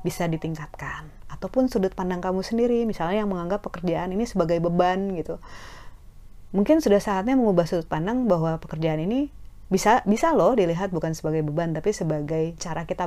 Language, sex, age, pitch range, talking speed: Indonesian, female, 30-49, 160-210 Hz, 160 wpm